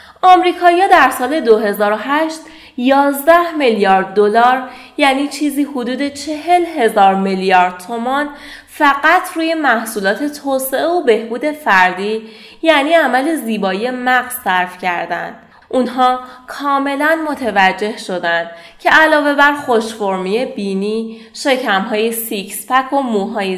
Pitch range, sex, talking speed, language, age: 205-275 Hz, female, 105 wpm, Persian, 30-49